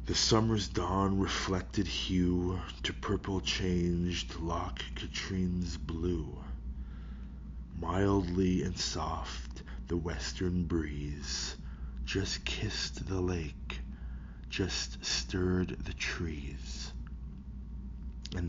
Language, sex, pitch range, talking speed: English, male, 65-90 Hz, 85 wpm